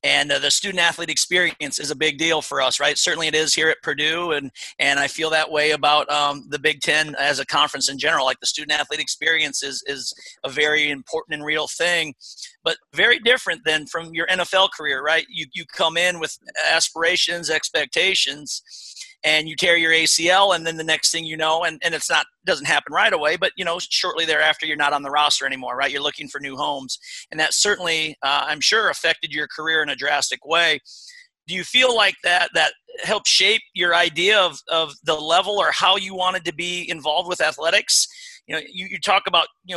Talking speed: 215 wpm